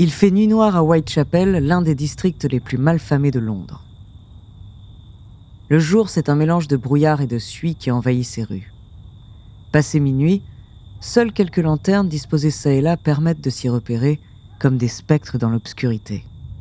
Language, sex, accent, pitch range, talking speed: French, female, French, 105-150 Hz, 170 wpm